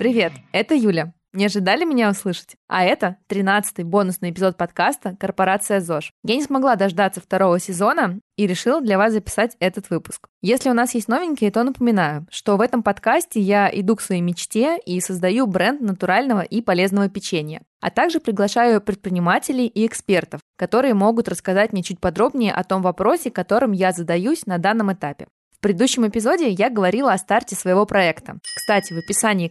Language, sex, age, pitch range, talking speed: Russian, female, 20-39, 185-225 Hz, 170 wpm